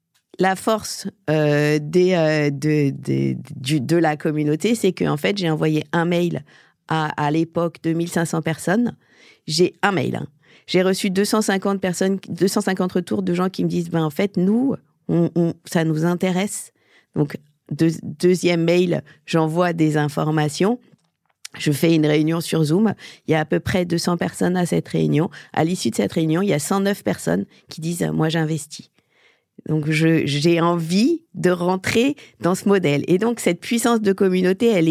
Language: French